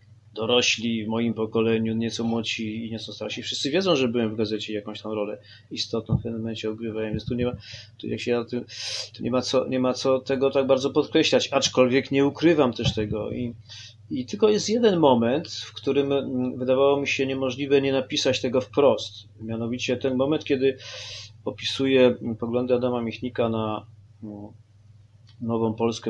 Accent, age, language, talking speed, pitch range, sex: native, 30-49, Polish, 170 wpm, 110-135 Hz, male